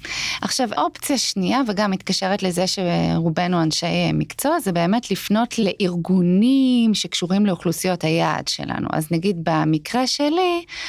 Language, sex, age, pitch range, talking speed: Hebrew, female, 20-39, 180-225 Hz, 115 wpm